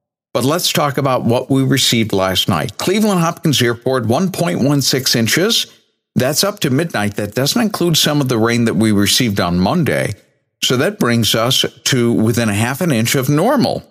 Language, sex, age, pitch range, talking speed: English, male, 60-79, 105-145 Hz, 180 wpm